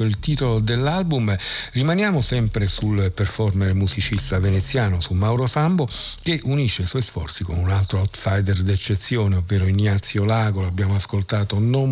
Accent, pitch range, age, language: native, 95-115 Hz, 50-69, Italian